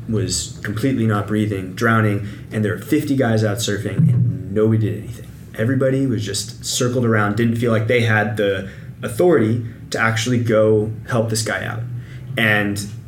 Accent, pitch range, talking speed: American, 105-125 Hz, 165 wpm